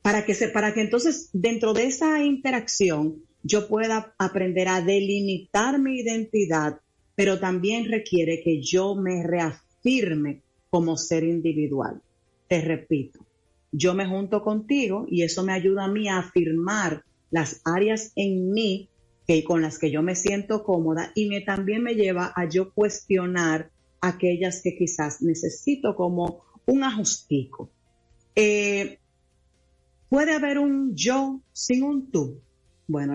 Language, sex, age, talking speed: Spanish, female, 40-59, 140 wpm